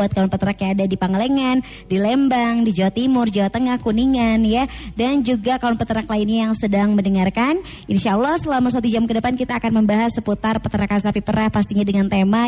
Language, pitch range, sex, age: Indonesian, 210-275 Hz, male, 20-39